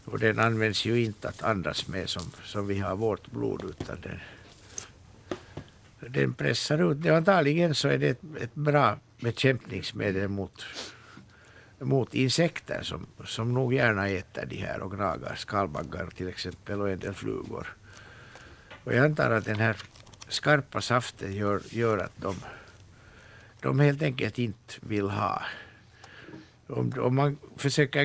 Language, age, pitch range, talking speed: Swedish, 60-79, 100-130 Hz, 140 wpm